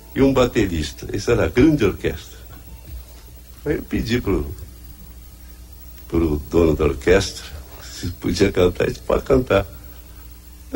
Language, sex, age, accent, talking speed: Portuguese, male, 60-79, Brazilian, 130 wpm